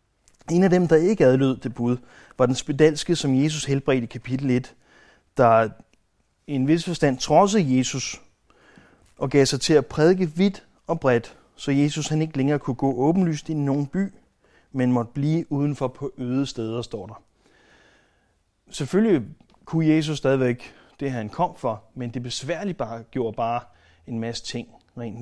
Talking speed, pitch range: 165 wpm, 125-155 Hz